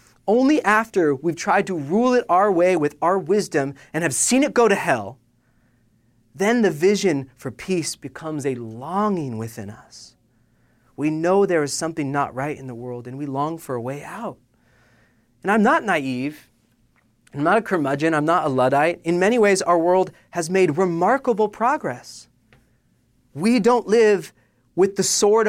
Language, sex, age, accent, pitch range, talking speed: English, male, 30-49, American, 125-205 Hz, 170 wpm